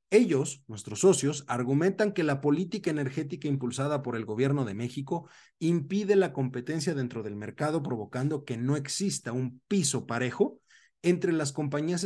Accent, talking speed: Mexican, 150 wpm